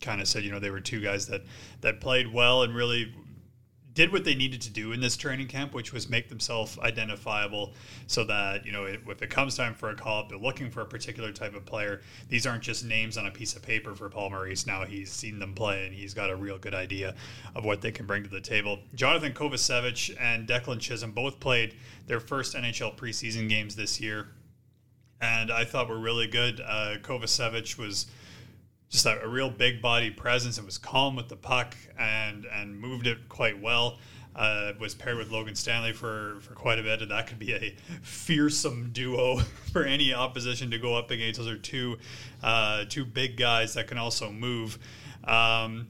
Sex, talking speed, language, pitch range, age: male, 210 wpm, English, 110-125 Hz, 30-49